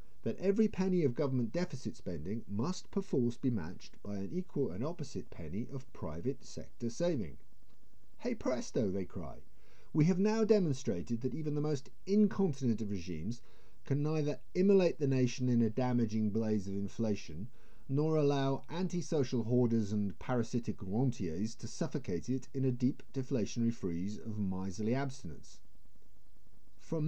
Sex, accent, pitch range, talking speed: male, British, 105-135 Hz, 145 wpm